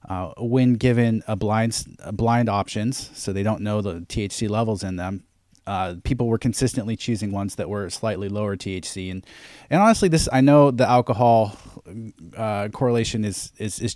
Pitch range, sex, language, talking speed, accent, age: 95-120 Hz, male, English, 175 wpm, American, 30-49